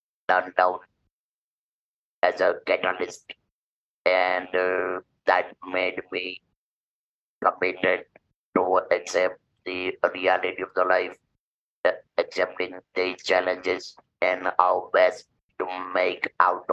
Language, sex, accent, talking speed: English, male, Indian, 95 wpm